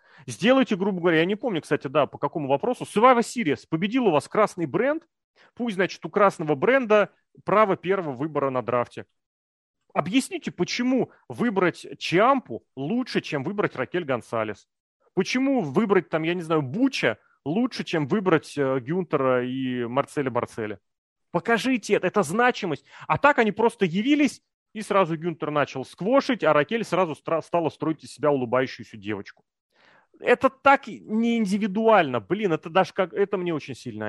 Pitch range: 130-200 Hz